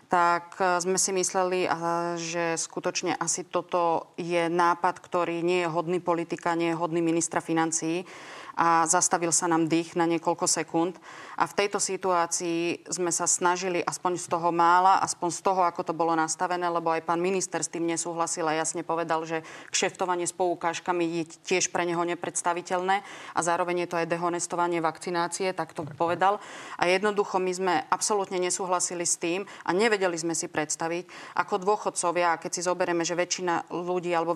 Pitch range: 170-195 Hz